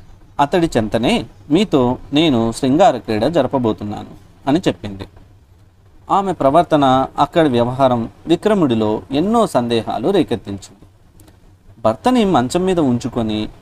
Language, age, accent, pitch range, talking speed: Telugu, 40-59, native, 105-135 Hz, 95 wpm